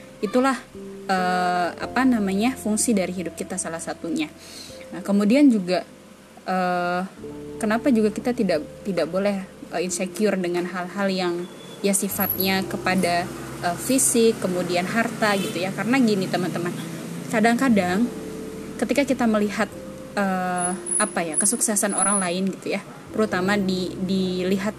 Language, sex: Indonesian, female